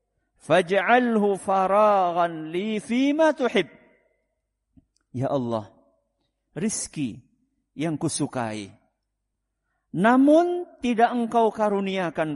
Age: 50-69